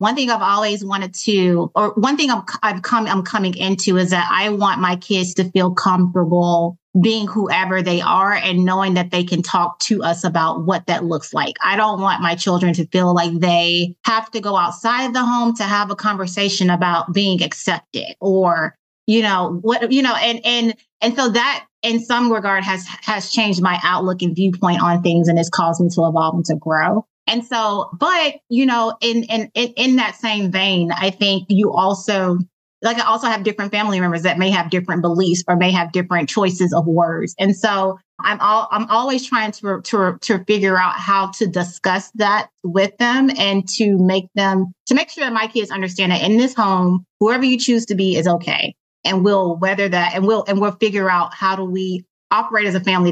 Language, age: English, 30-49